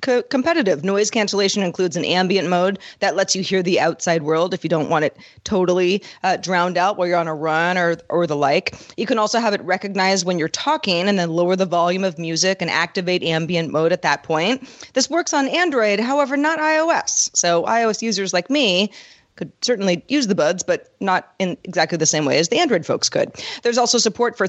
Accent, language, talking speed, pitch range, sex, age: American, English, 215 wpm, 175-230 Hz, female, 30-49